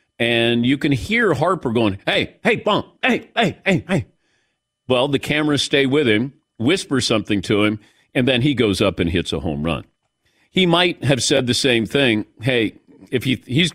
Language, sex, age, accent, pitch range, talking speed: English, male, 50-69, American, 95-140 Hz, 190 wpm